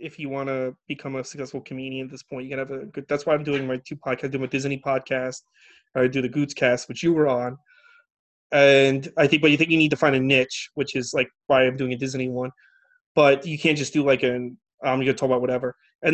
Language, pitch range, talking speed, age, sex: English, 135-160 Hz, 270 wpm, 30-49, male